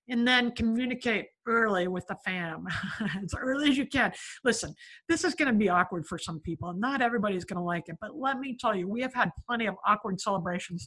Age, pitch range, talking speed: 50-69, 195-255 Hz, 210 wpm